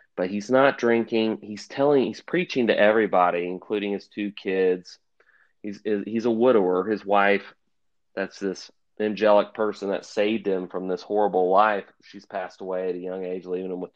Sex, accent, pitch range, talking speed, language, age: male, American, 95-110 Hz, 175 wpm, English, 30-49